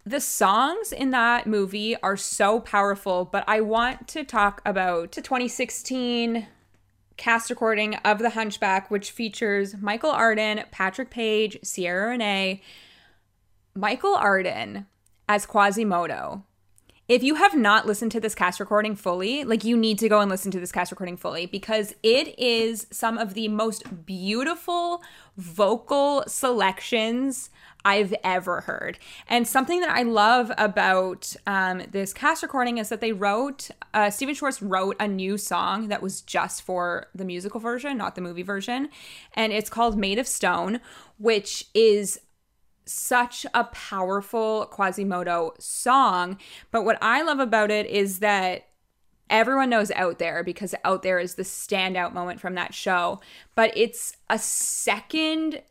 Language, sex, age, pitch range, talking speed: English, female, 20-39, 190-235 Hz, 150 wpm